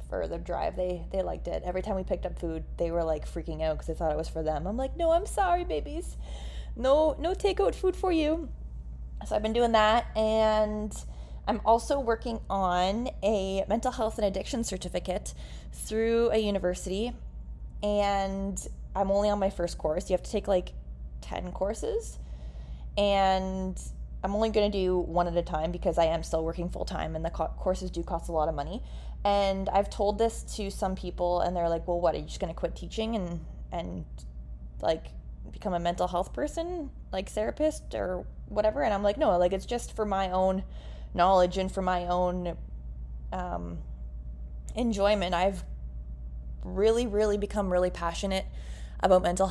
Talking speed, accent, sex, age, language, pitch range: 185 wpm, American, female, 20-39, English, 160-205 Hz